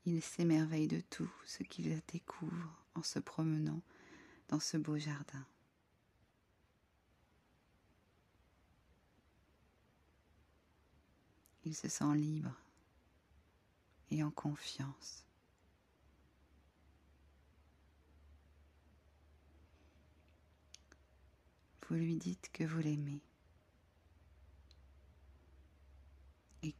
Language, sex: French, female